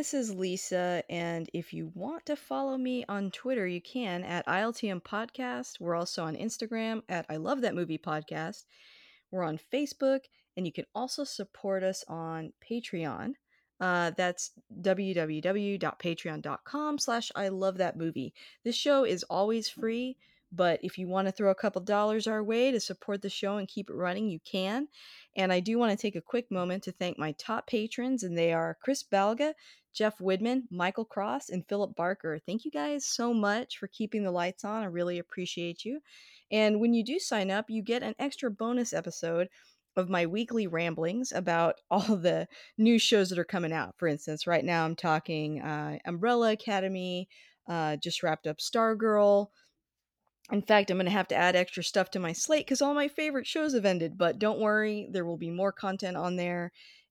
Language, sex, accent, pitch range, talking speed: English, female, American, 175-230 Hz, 190 wpm